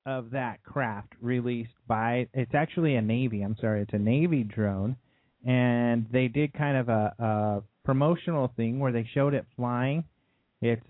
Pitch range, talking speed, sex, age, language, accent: 110-135 Hz, 165 wpm, male, 30-49, English, American